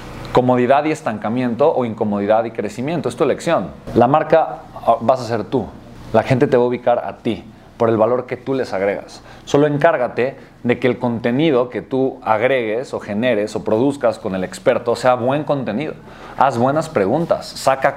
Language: Spanish